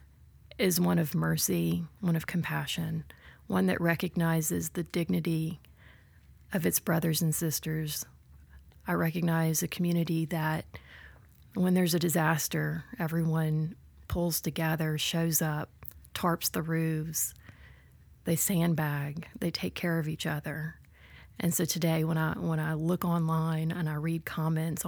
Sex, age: female, 30-49